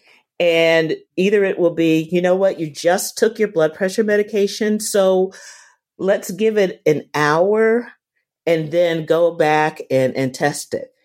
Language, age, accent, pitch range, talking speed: English, 50-69, American, 160-220 Hz, 155 wpm